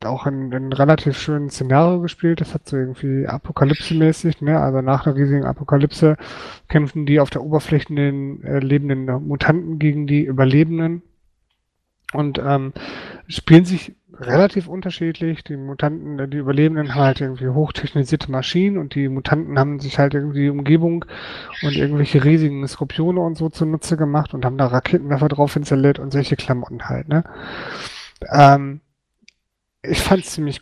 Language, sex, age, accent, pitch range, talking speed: German, male, 30-49, German, 140-165 Hz, 155 wpm